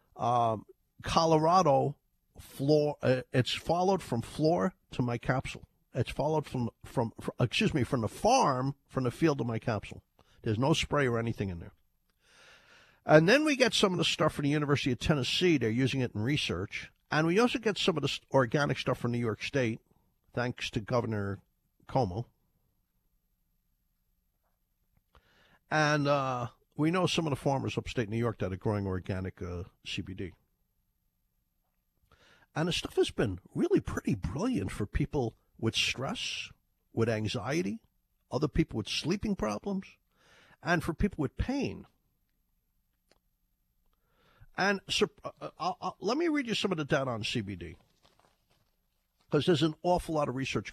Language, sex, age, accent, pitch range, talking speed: English, male, 50-69, American, 110-160 Hz, 155 wpm